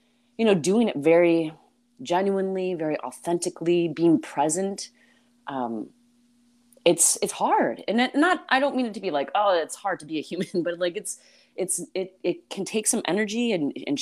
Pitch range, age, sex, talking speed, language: 130-200 Hz, 30-49, female, 165 wpm, English